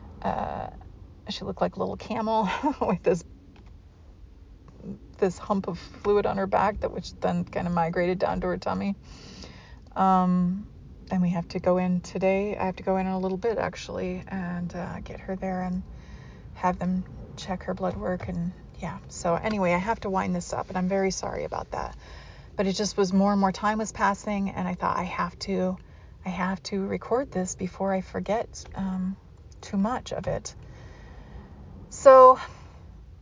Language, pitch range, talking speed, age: English, 175-205 Hz, 180 wpm, 30-49